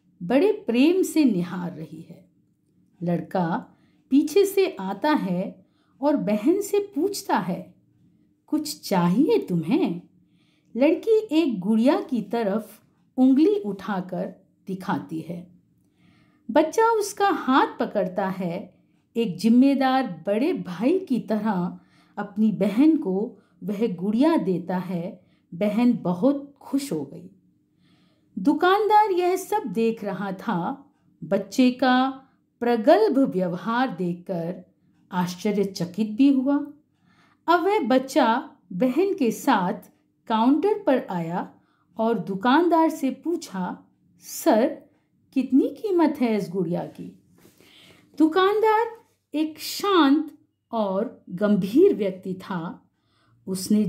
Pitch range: 195-300 Hz